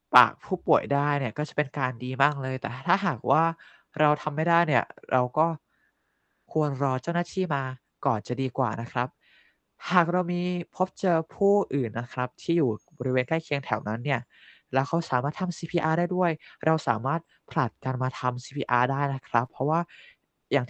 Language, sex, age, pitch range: Thai, male, 20-39, 130-160 Hz